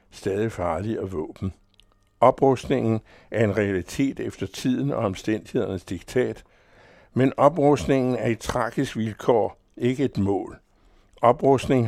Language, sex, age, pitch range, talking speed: Danish, male, 60-79, 95-120 Hz, 115 wpm